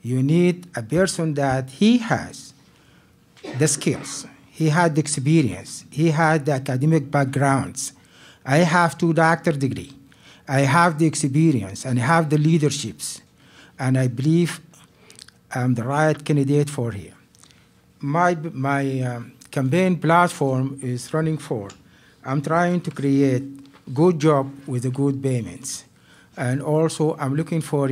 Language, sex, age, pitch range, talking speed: English, male, 60-79, 130-155 Hz, 140 wpm